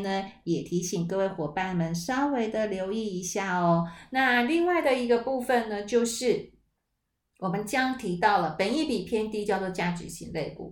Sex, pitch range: female, 170-215 Hz